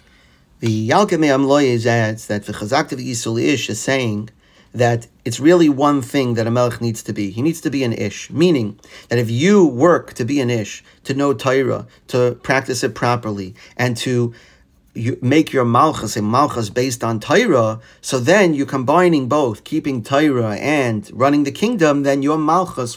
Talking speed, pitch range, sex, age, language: 180 wpm, 115-145 Hz, male, 40-59, English